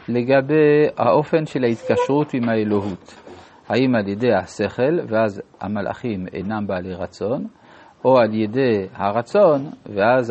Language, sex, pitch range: Hebrew, male, 105-140 Hz